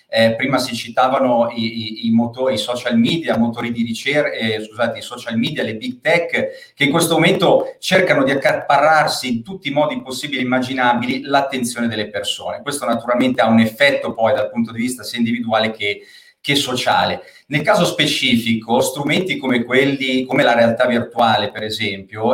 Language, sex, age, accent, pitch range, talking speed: Italian, male, 30-49, native, 115-155 Hz, 150 wpm